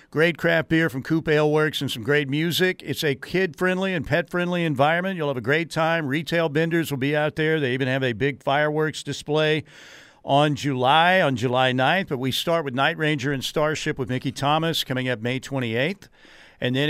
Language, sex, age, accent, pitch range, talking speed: English, male, 50-69, American, 135-160 Hz, 200 wpm